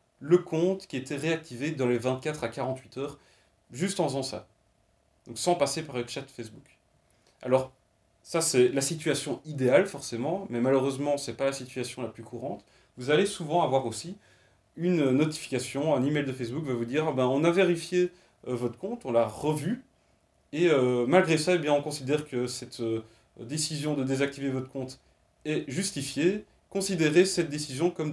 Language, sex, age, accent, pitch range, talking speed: French, male, 30-49, French, 120-165 Hz, 185 wpm